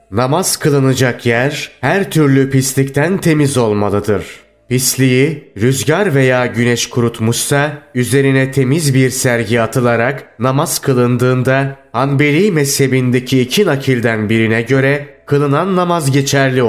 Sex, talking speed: male, 105 wpm